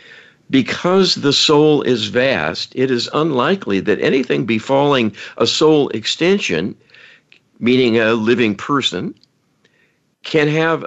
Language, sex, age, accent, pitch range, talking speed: English, male, 60-79, American, 105-135 Hz, 110 wpm